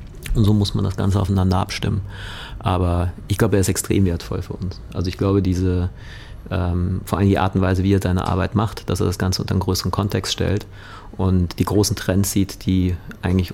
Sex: male